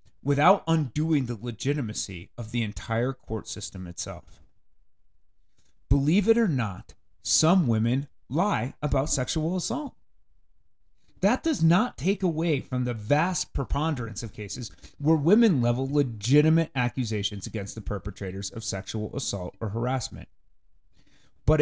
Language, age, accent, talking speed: English, 30-49, American, 125 wpm